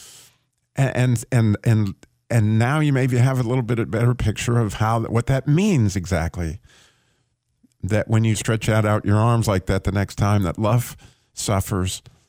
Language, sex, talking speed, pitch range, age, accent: English, male, 175 wpm, 105-130 Hz, 50-69, American